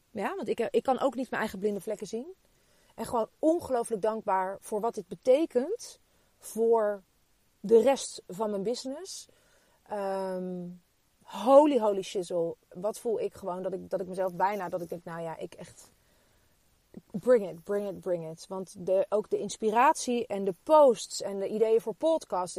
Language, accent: Dutch, Dutch